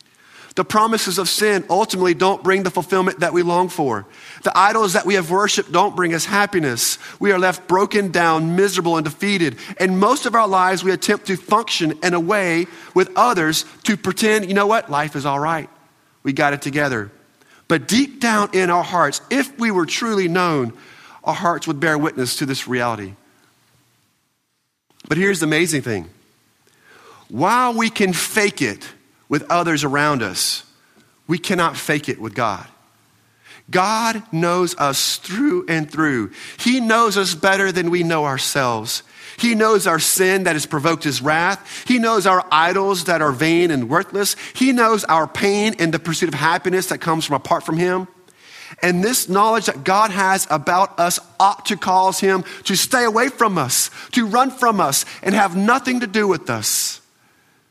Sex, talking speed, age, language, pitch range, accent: male, 180 wpm, 40-59, English, 155-205 Hz, American